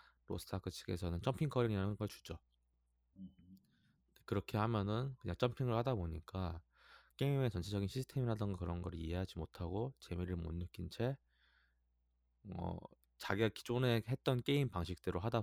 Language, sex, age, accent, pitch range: Korean, male, 20-39, native, 80-115 Hz